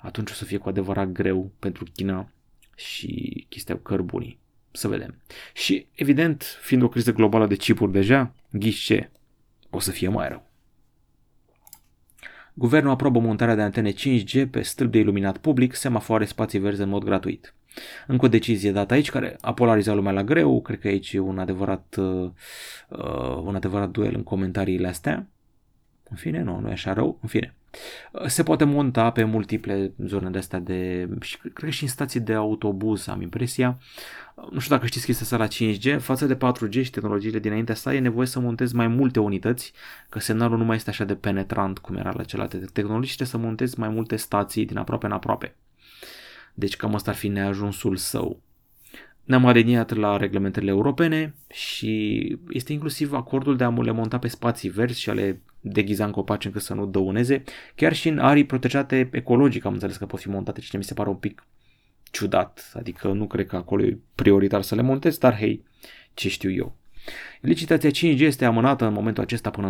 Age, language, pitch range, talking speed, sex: 30-49, Romanian, 100-125 Hz, 185 wpm, male